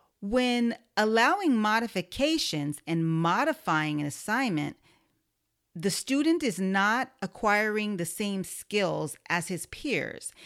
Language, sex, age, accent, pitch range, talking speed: English, female, 40-59, American, 170-240 Hz, 105 wpm